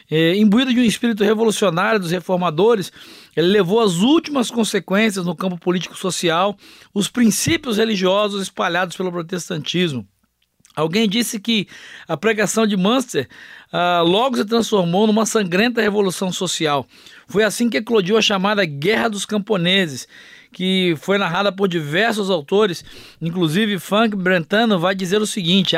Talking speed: 135 wpm